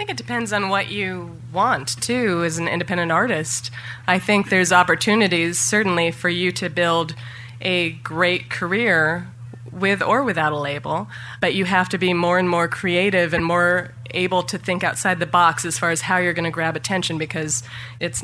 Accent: American